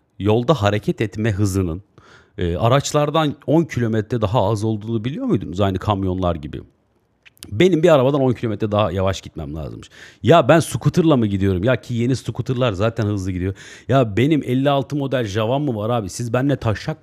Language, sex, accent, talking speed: Turkish, male, native, 170 wpm